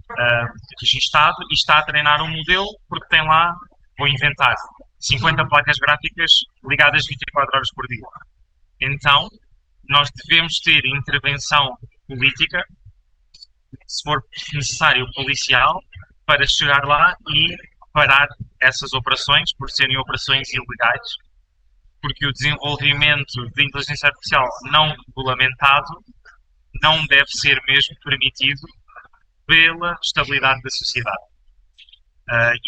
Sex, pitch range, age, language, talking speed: male, 130-155 Hz, 20-39, Portuguese, 110 wpm